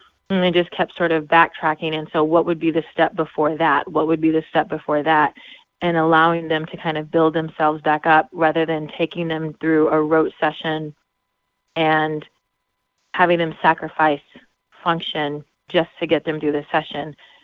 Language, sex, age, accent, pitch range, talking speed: English, female, 30-49, American, 150-165 Hz, 180 wpm